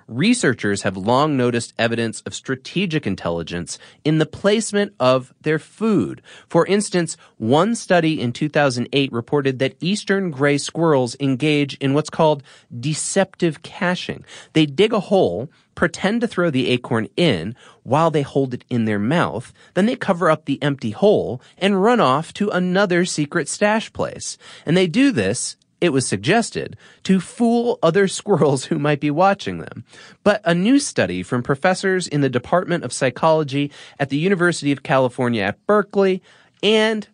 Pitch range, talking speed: 125-185 Hz, 160 wpm